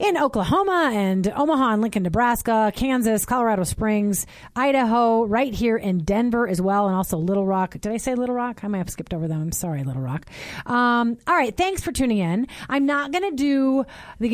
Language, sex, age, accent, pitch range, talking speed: English, female, 30-49, American, 190-260 Hz, 205 wpm